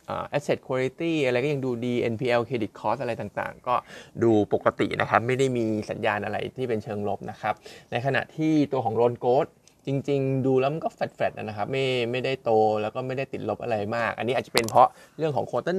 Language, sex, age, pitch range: Thai, male, 20-39, 115-140 Hz